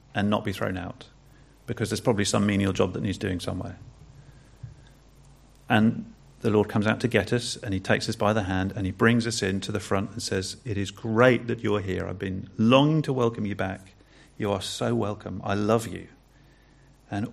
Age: 40-59